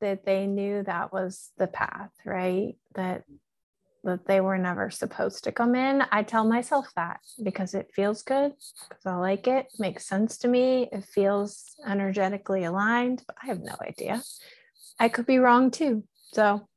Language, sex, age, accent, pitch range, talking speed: English, female, 30-49, American, 195-240 Hz, 170 wpm